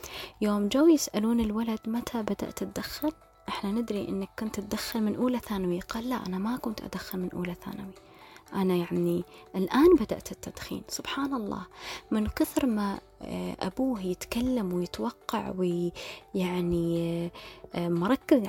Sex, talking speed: female, 130 wpm